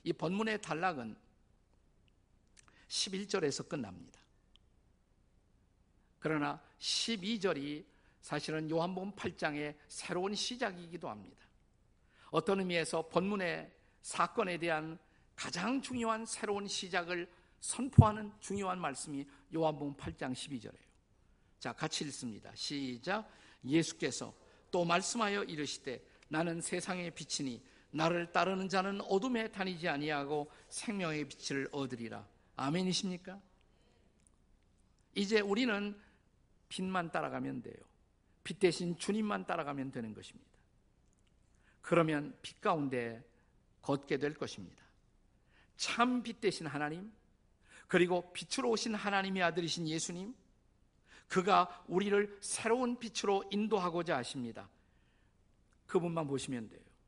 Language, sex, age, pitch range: Korean, male, 50-69, 145-200 Hz